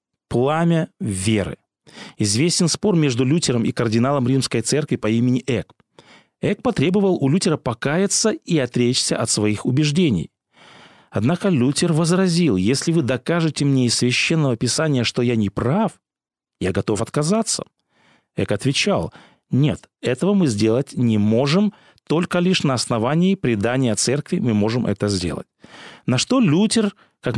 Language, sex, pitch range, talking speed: Russian, male, 115-170 Hz, 135 wpm